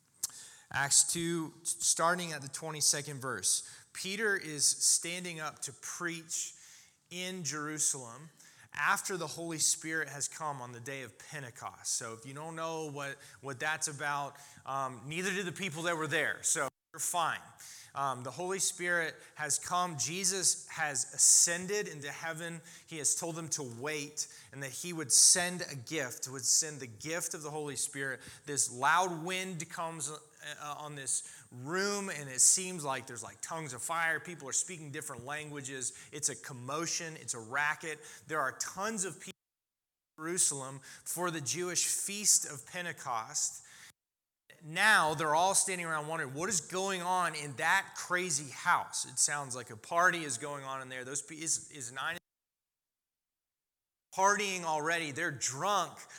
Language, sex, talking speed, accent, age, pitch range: English, male, 160 wpm, American, 20-39, 140-175 Hz